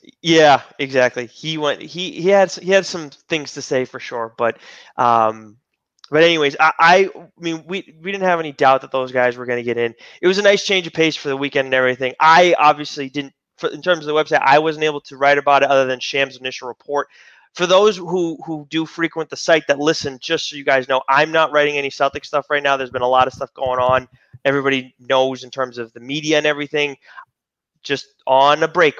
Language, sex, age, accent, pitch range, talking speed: English, male, 20-39, American, 130-165 Hz, 235 wpm